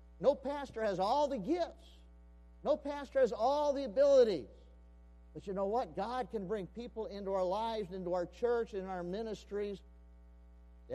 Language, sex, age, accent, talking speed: English, male, 50-69, American, 165 wpm